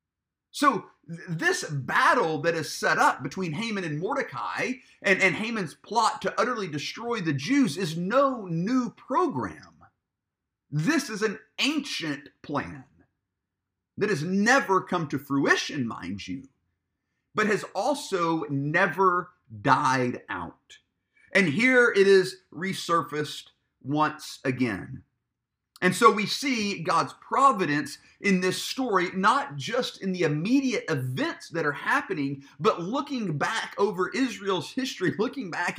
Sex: male